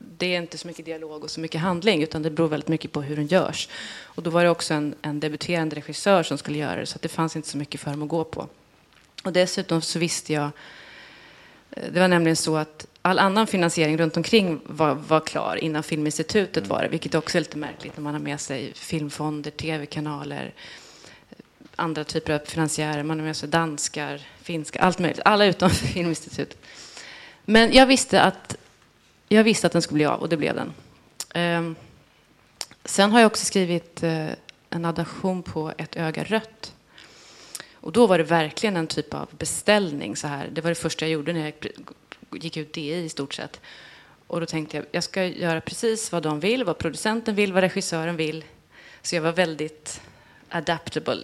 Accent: native